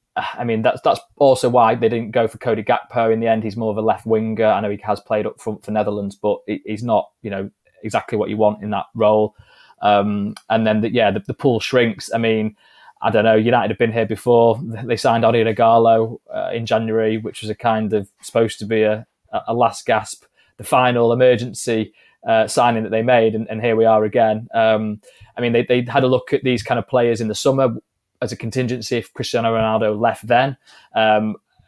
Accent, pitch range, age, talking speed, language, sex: British, 110-120 Hz, 20-39, 225 wpm, English, male